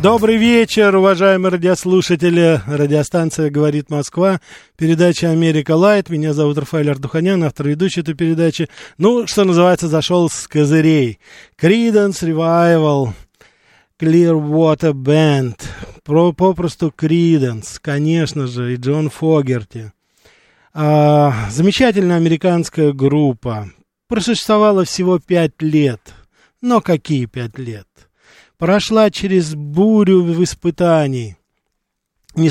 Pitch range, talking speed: 150-190 Hz, 100 wpm